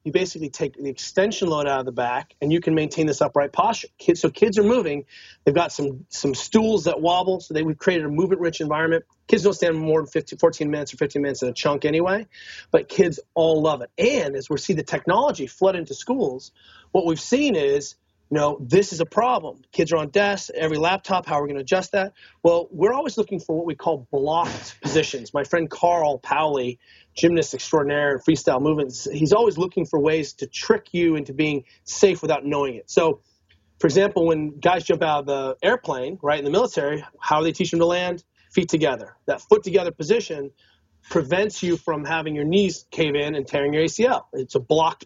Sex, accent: male, American